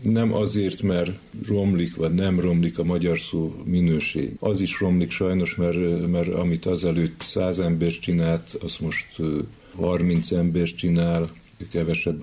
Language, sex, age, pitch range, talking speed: Hungarian, male, 50-69, 80-95 Hz, 135 wpm